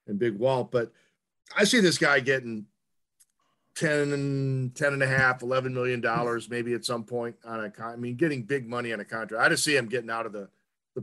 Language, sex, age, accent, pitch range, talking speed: English, male, 50-69, American, 115-145 Hz, 220 wpm